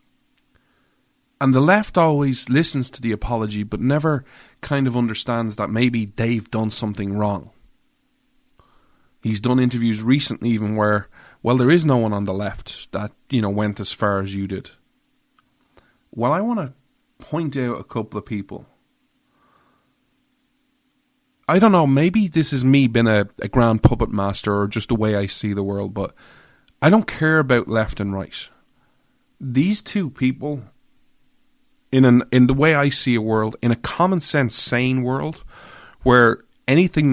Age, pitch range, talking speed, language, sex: 30-49, 110-155 Hz, 160 wpm, English, male